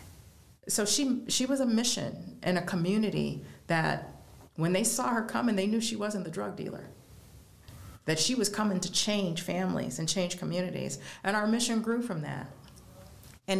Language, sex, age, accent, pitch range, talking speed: English, female, 40-59, American, 150-210 Hz, 170 wpm